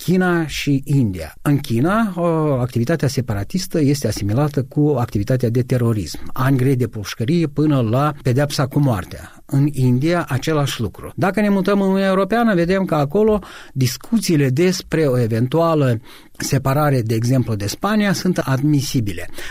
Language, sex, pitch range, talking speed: Romanian, male, 125-165 Hz, 140 wpm